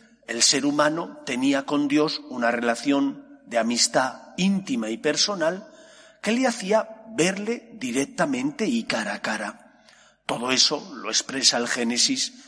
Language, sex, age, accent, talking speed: Spanish, male, 40-59, Spanish, 135 wpm